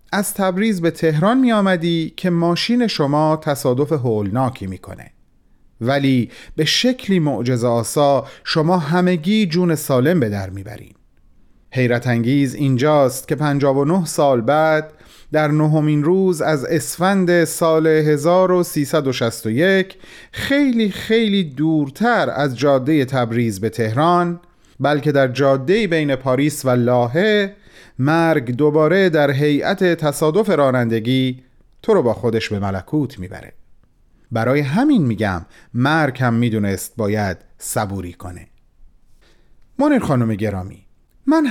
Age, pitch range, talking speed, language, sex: 40-59, 120-175 Hz, 115 wpm, Persian, male